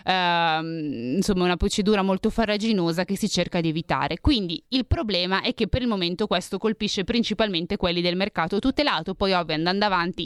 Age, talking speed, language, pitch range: 20-39, 175 wpm, Italian, 175-210 Hz